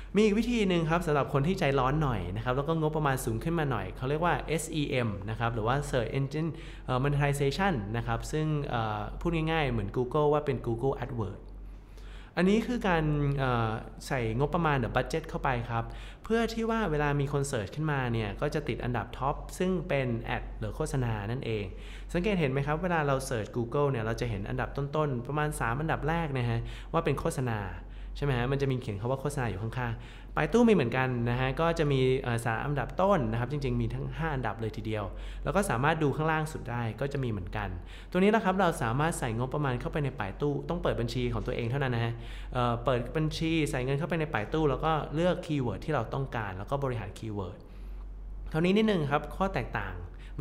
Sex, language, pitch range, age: male, Thai, 115-155 Hz, 20-39